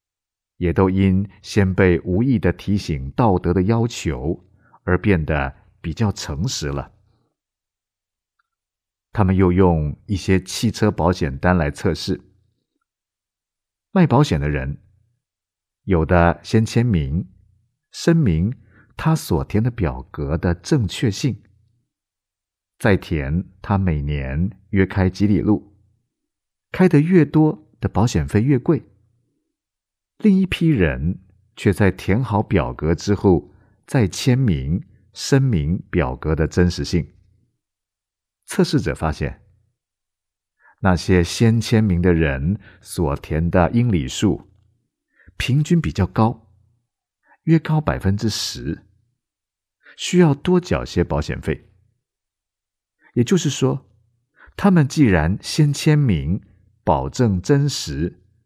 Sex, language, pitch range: male, Korean, 90-115 Hz